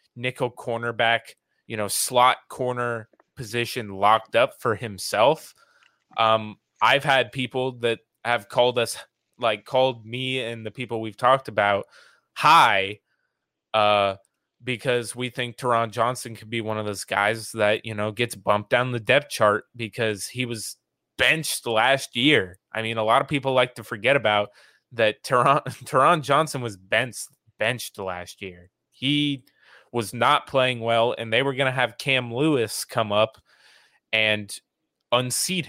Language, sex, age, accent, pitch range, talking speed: English, male, 20-39, American, 110-130 Hz, 155 wpm